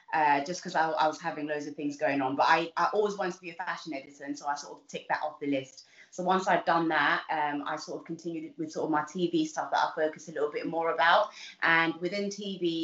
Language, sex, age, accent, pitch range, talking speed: English, female, 20-39, British, 150-180 Hz, 275 wpm